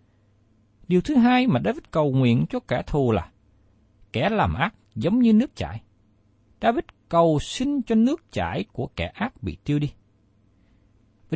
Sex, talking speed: male, 165 wpm